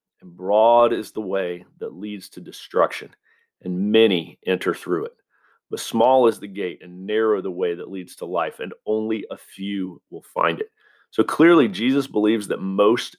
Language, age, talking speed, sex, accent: English, 40-59, 180 wpm, male, American